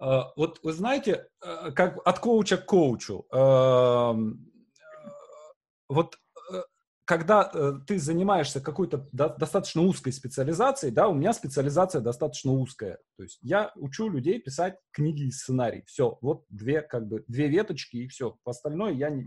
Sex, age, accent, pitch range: male, 30-49, native, 125-180 Hz